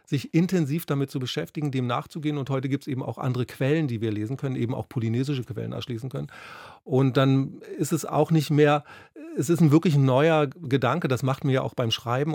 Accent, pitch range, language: German, 130-155 Hz, German